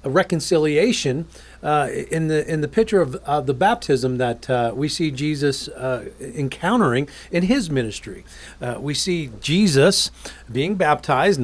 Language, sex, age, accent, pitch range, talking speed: English, male, 40-59, American, 130-175 Hz, 145 wpm